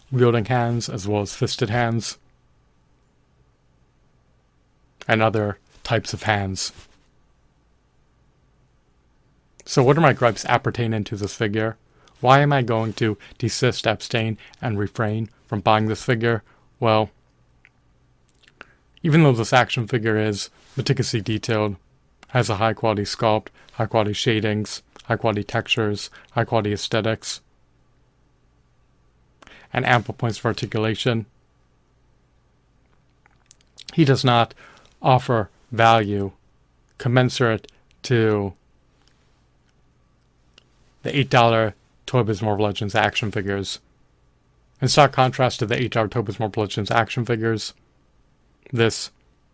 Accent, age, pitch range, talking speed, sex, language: American, 30-49, 105-125 Hz, 105 wpm, male, English